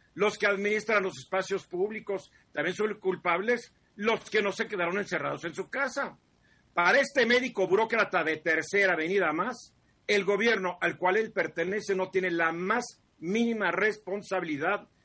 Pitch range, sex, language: 160-205 Hz, male, Spanish